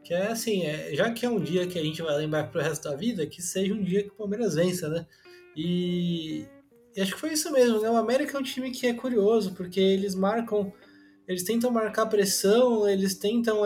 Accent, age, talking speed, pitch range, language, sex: Brazilian, 20-39, 230 wpm, 175-210 Hz, Portuguese, male